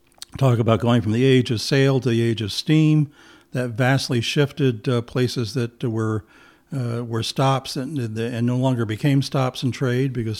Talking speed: 185 wpm